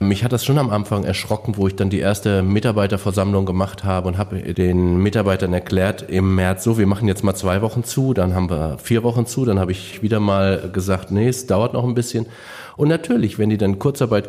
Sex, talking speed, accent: male, 225 wpm, German